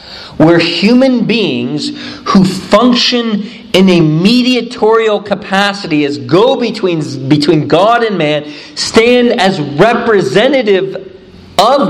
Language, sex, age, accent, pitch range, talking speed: English, male, 40-59, American, 170-230 Hz, 100 wpm